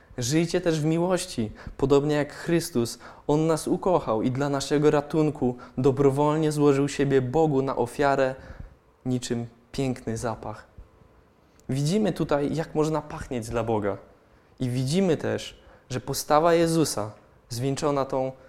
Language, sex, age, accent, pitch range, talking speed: Polish, male, 20-39, native, 120-150 Hz, 125 wpm